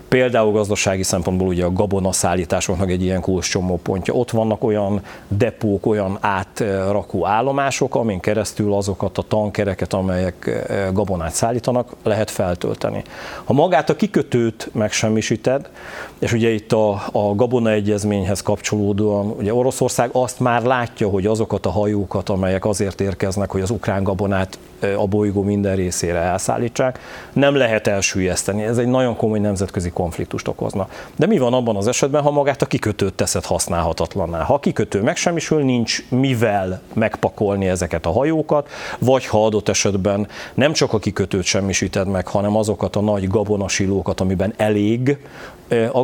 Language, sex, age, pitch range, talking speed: Hungarian, male, 40-59, 95-120 Hz, 145 wpm